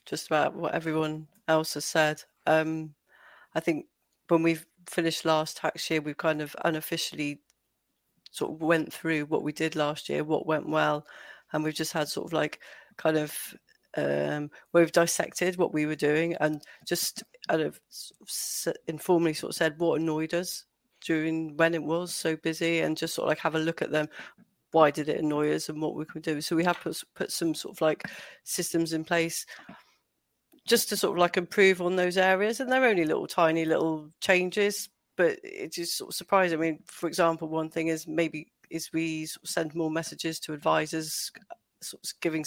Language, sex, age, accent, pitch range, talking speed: English, female, 30-49, British, 155-175 Hz, 195 wpm